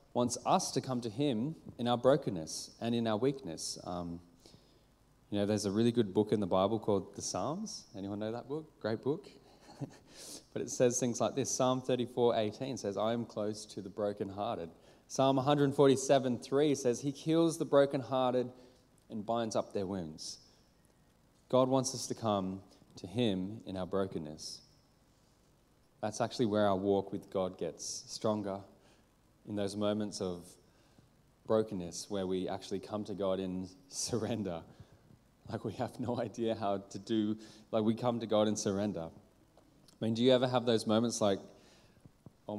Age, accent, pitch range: 20-39, Australian, 100-125 Hz